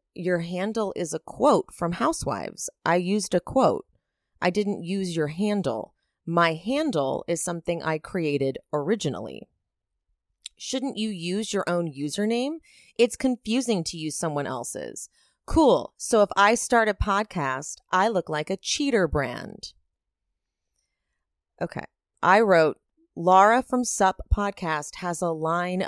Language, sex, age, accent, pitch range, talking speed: English, female, 30-49, American, 165-225 Hz, 135 wpm